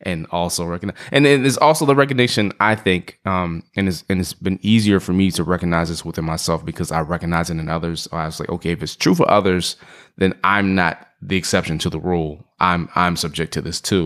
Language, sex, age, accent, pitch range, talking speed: English, male, 20-39, American, 80-95 Hz, 230 wpm